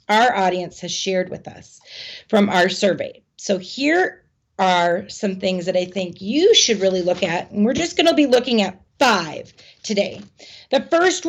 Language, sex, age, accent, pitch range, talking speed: English, female, 30-49, American, 190-255 Hz, 175 wpm